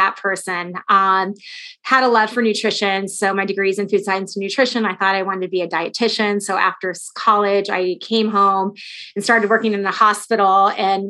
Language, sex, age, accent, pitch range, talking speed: English, female, 20-39, American, 185-205 Hz, 200 wpm